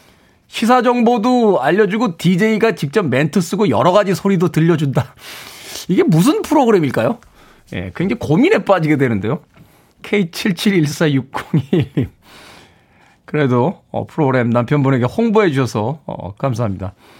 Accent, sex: native, male